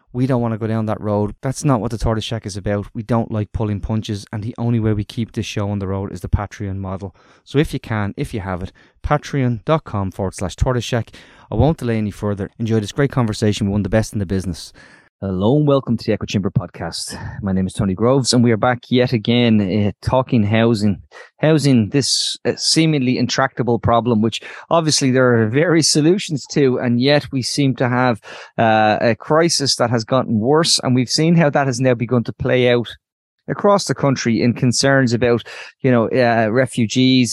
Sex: male